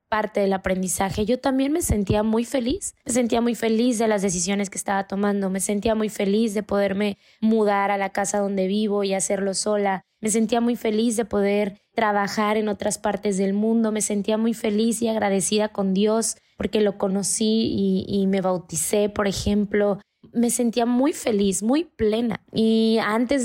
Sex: female